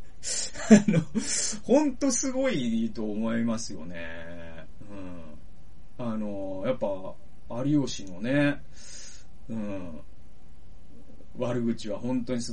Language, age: Japanese, 30-49